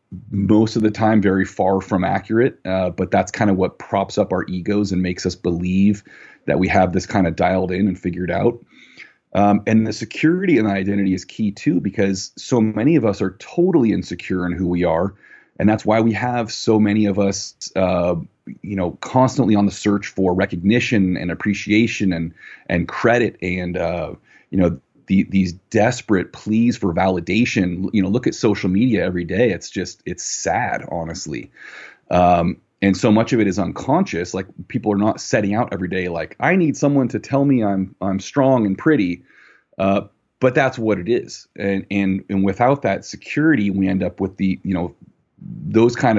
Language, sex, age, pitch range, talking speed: English, male, 30-49, 95-110 Hz, 190 wpm